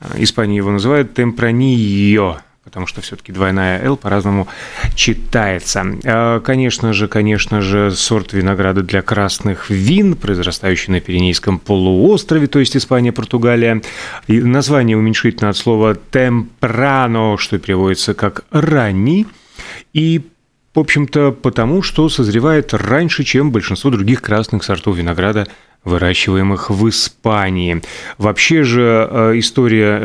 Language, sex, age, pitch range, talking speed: Russian, male, 30-49, 100-130 Hz, 110 wpm